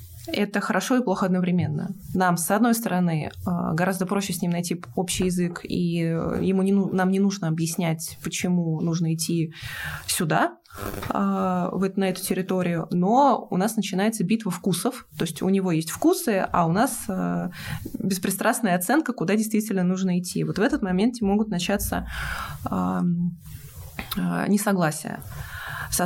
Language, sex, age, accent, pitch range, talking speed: Russian, female, 20-39, native, 175-210 Hz, 135 wpm